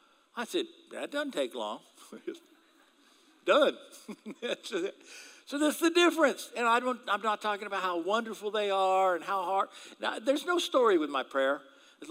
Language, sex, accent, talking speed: English, male, American, 175 wpm